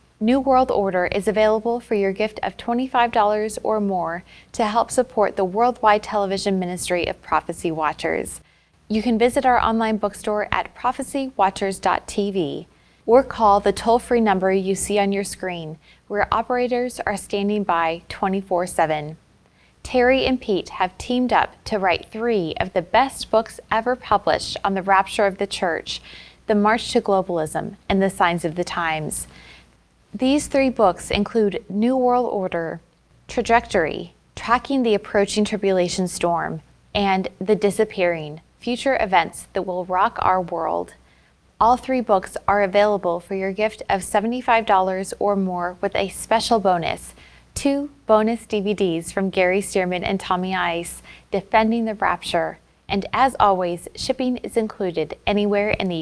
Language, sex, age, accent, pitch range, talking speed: English, female, 20-39, American, 180-225 Hz, 145 wpm